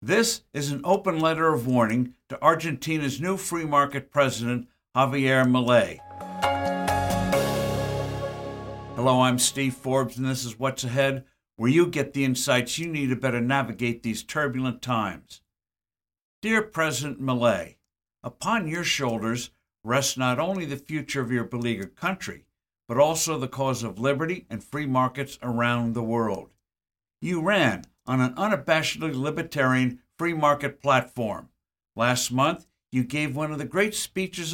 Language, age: English, 60-79